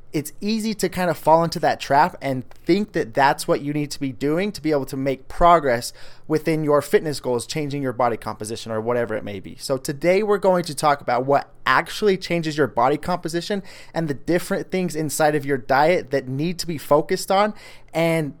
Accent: American